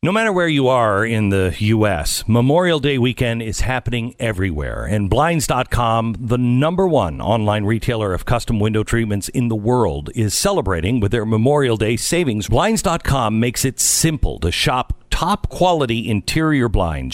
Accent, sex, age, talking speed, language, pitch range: American, male, 50-69, 160 wpm, English, 110-155 Hz